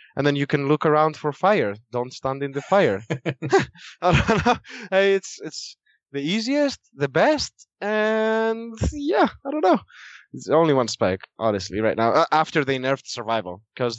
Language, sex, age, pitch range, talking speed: English, male, 20-39, 105-145 Hz, 170 wpm